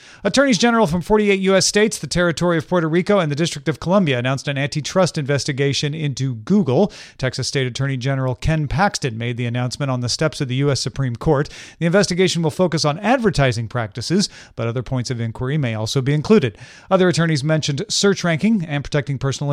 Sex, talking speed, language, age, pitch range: male, 195 wpm, English, 40-59, 130-175 Hz